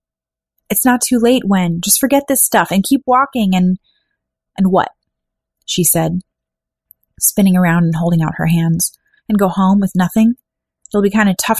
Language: English